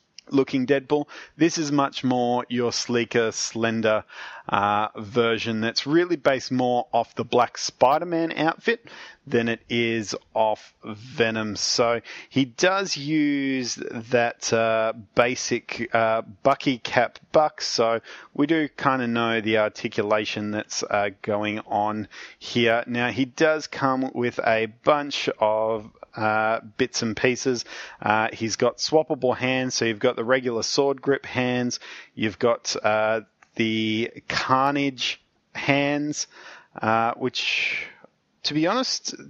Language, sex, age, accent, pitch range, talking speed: English, male, 30-49, Australian, 110-135 Hz, 130 wpm